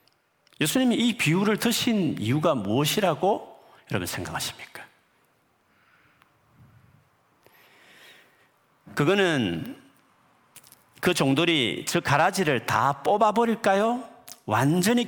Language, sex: Korean, male